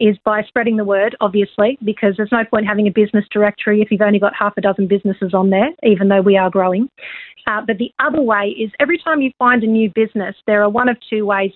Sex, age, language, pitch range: female, 40-59, English, 200-235 Hz